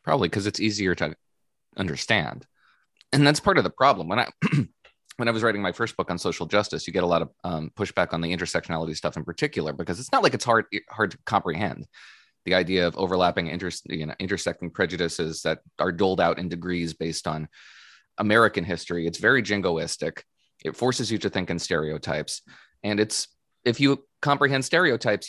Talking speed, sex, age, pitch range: 190 wpm, male, 30-49, 90-115 Hz